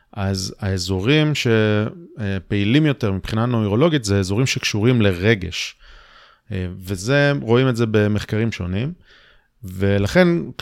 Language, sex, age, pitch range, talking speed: Hebrew, male, 30-49, 105-145 Hz, 95 wpm